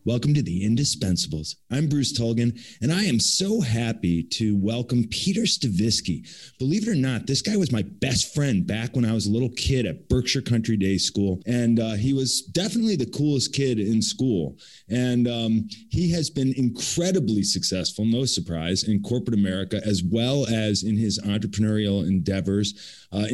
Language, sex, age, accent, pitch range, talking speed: English, male, 30-49, American, 110-135 Hz, 175 wpm